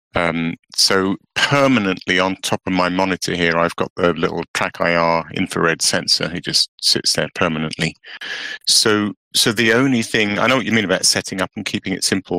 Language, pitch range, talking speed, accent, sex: English, 85-105 Hz, 190 wpm, British, male